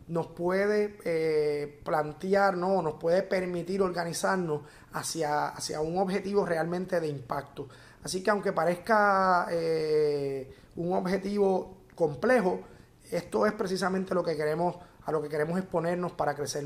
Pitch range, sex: 155-195 Hz, male